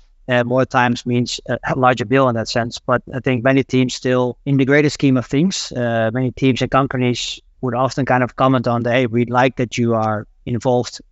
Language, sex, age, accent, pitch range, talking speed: English, male, 30-49, Dutch, 115-130 Hz, 225 wpm